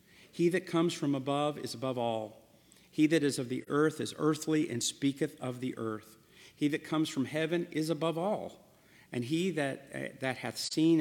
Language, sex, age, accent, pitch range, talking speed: English, male, 50-69, American, 115-145 Hz, 190 wpm